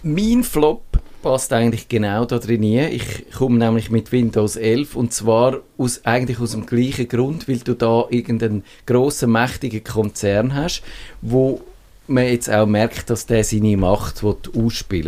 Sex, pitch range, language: male, 110-130 Hz, German